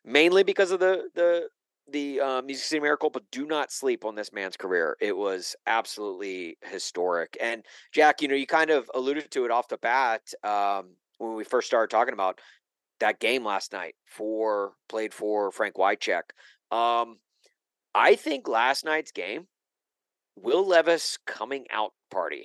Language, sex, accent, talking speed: English, male, American, 165 wpm